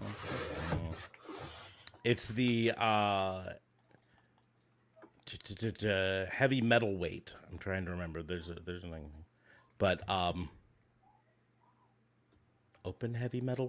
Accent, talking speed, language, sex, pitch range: American, 85 wpm, English, male, 100-135 Hz